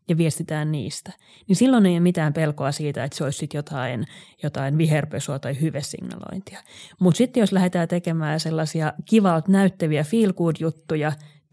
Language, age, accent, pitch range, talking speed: Finnish, 30-49, native, 155-190 Hz, 140 wpm